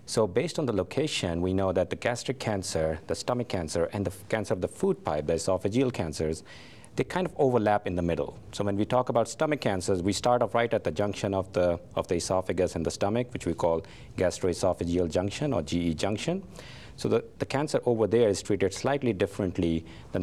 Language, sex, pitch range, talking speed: English, male, 85-110 Hz, 210 wpm